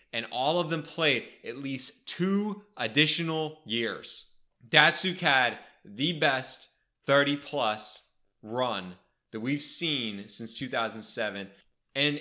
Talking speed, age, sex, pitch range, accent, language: 110 wpm, 20-39, male, 110-150 Hz, American, English